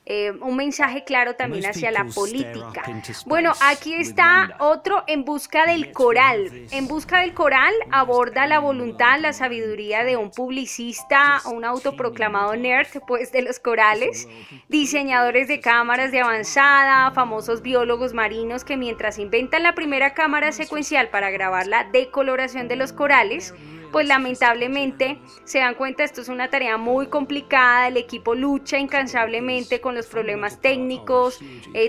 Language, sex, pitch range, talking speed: Spanish, female, 235-290 Hz, 145 wpm